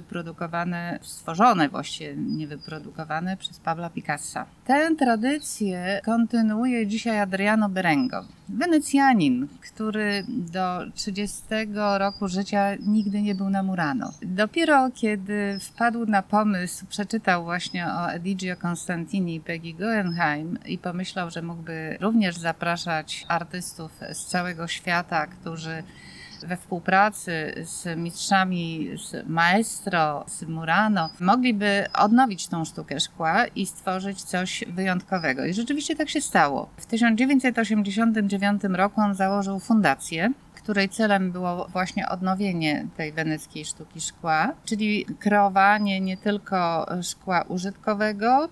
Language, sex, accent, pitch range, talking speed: Polish, female, native, 170-210 Hz, 115 wpm